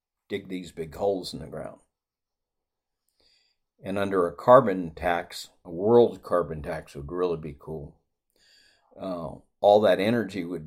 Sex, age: male, 50-69